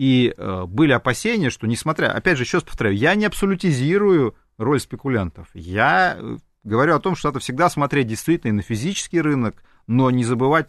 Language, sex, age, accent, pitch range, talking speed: Russian, male, 30-49, native, 115-165 Hz, 170 wpm